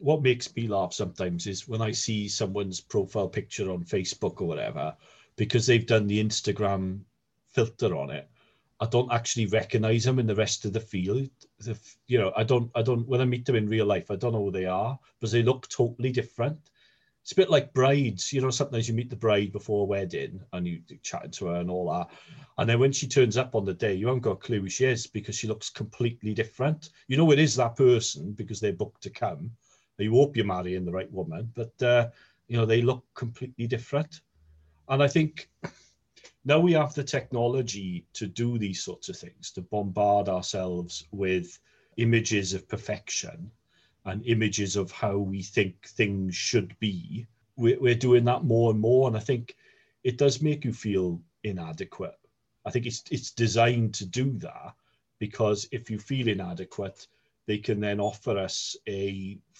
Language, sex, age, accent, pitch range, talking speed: English, male, 40-59, British, 100-125 Hz, 195 wpm